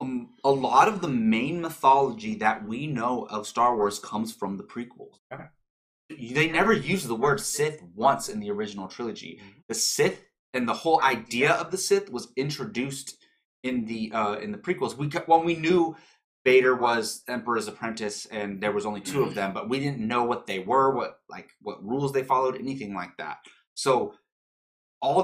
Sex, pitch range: male, 110-160 Hz